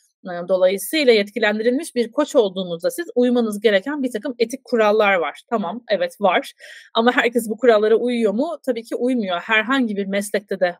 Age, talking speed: 30-49, 160 wpm